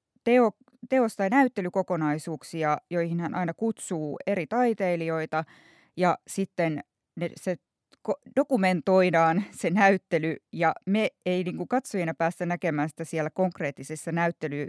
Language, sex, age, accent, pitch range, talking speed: Finnish, female, 20-39, native, 160-205 Hz, 110 wpm